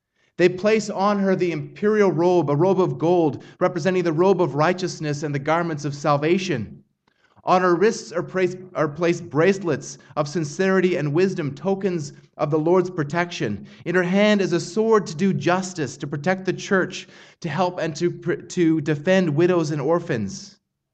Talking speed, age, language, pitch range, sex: 165 wpm, 30-49, English, 160-185 Hz, male